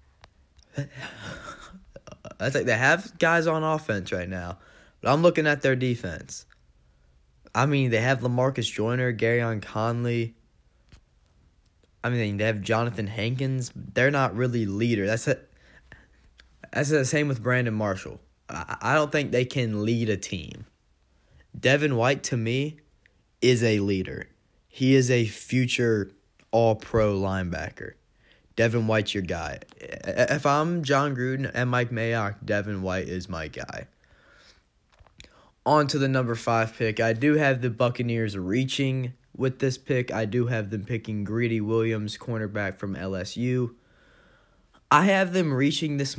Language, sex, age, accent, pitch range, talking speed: English, male, 10-29, American, 105-130 Hz, 140 wpm